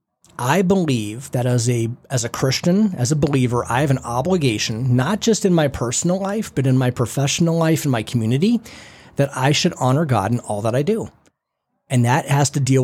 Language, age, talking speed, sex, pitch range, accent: English, 30-49, 205 wpm, male, 120-150 Hz, American